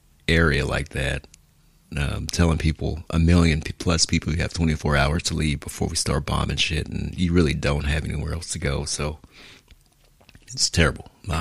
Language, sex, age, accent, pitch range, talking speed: English, male, 40-59, American, 75-85 Hz, 180 wpm